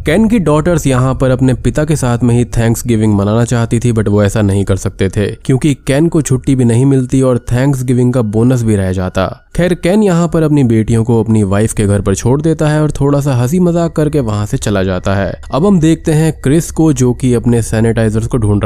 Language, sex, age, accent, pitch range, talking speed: Hindi, male, 20-39, native, 105-140 Hz, 240 wpm